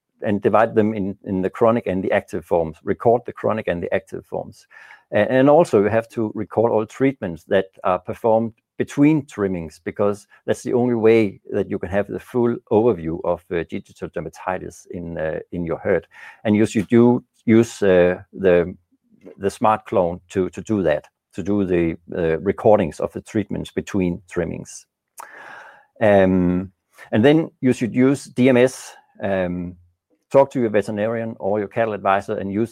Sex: male